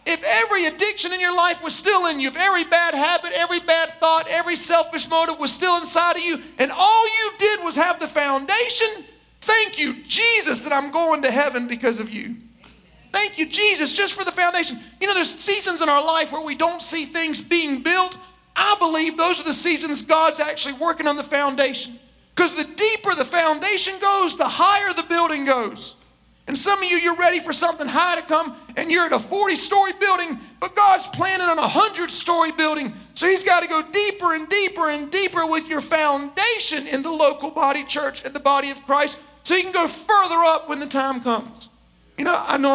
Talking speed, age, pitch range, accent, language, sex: 210 wpm, 40-59, 265-350 Hz, American, English, male